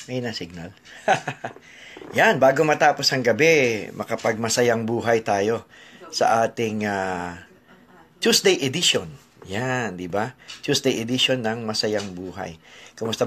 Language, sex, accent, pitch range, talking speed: English, male, Filipino, 105-130 Hz, 110 wpm